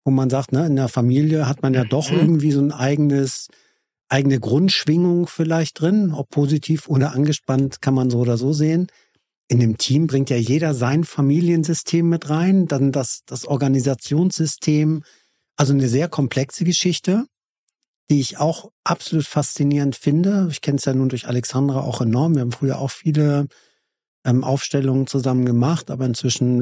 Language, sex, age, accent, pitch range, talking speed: German, male, 50-69, German, 125-150 Hz, 165 wpm